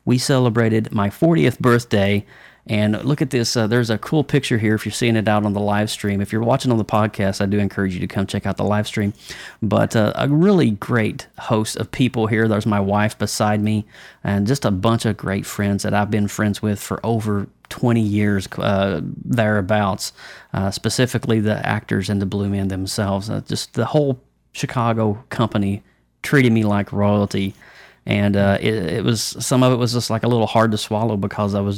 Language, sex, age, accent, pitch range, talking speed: English, male, 30-49, American, 100-120 Hz, 210 wpm